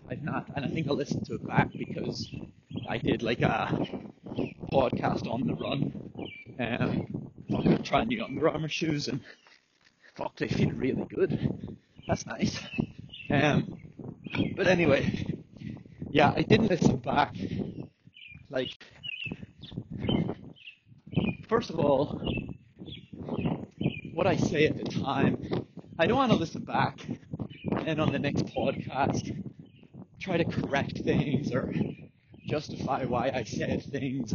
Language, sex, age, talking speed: English, male, 30-49, 125 wpm